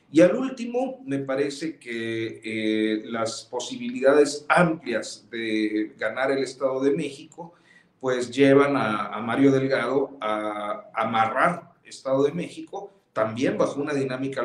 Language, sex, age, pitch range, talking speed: Spanish, male, 40-59, 115-145 Hz, 135 wpm